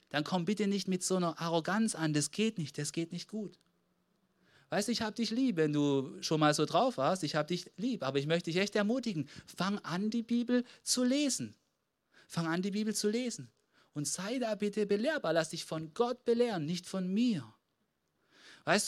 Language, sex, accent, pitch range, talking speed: German, male, German, 150-210 Hz, 205 wpm